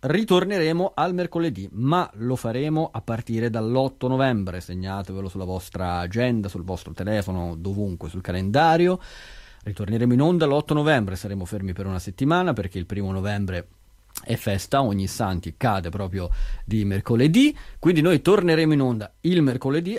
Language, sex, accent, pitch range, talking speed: Italian, male, native, 95-130 Hz, 145 wpm